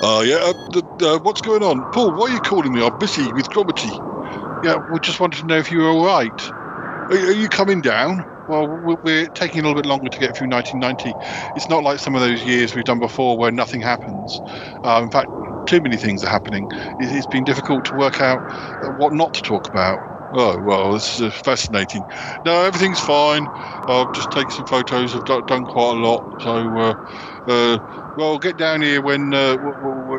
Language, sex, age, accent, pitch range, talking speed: English, male, 50-69, British, 115-150 Hz, 215 wpm